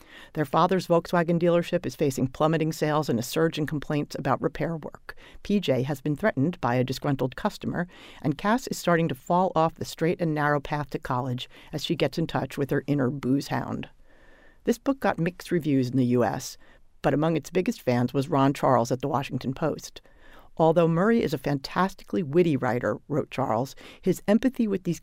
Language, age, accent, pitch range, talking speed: English, 50-69, American, 140-175 Hz, 195 wpm